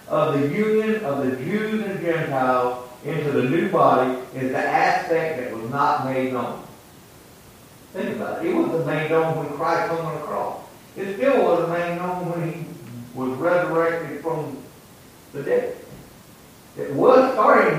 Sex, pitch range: male, 135-185 Hz